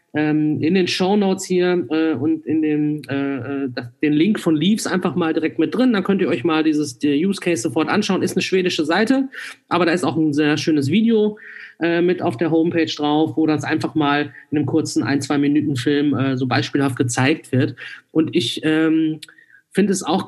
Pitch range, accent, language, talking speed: 150-185 Hz, German, German, 190 wpm